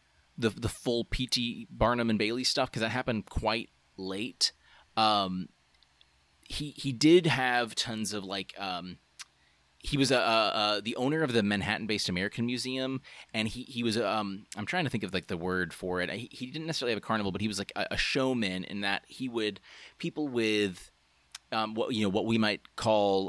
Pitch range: 90-110 Hz